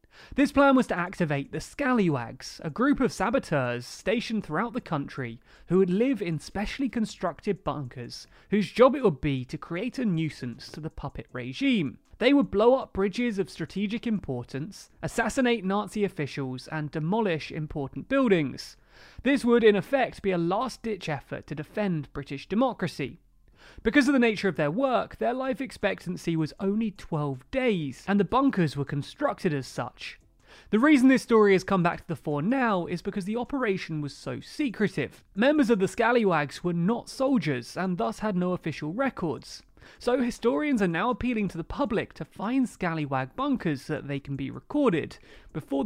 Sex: male